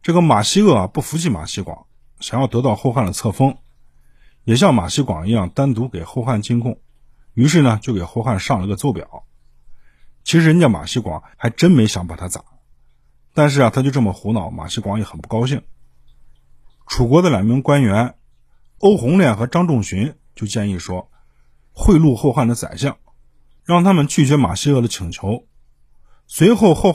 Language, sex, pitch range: Chinese, male, 95-140 Hz